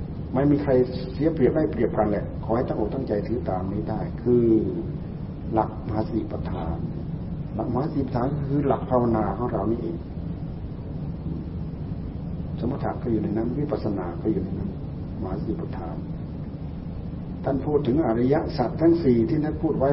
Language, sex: Thai, male